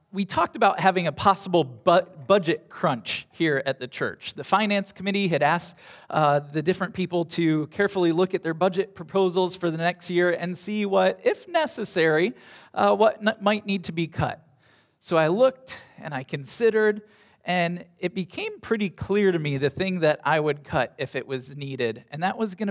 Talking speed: 190 wpm